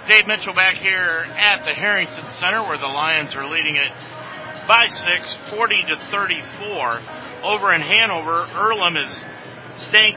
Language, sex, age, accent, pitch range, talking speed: English, male, 50-69, American, 145-190 Hz, 135 wpm